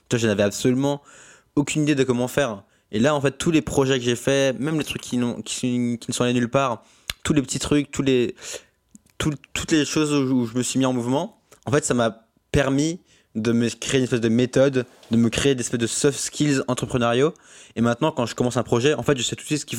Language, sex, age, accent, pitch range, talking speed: French, male, 20-39, French, 110-140 Hz, 260 wpm